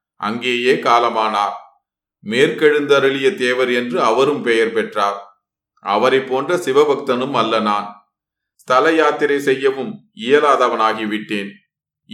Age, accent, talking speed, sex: 30-49, native, 85 wpm, male